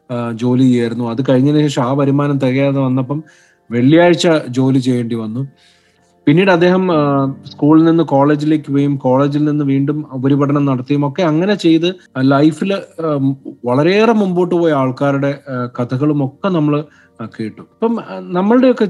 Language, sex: Malayalam, male